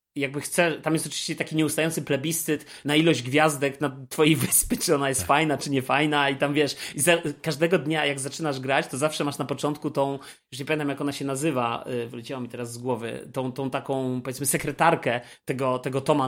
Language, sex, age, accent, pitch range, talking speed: Polish, male, 30-49, native, 140-175 Hz, 215 wpm